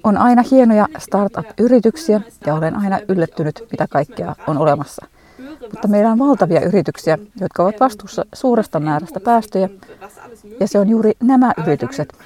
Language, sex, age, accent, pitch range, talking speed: Finnish, female, 30-49, native, 175-235 Hz, 140 wpm